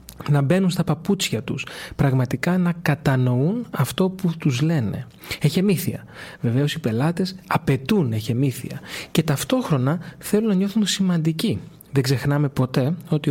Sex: male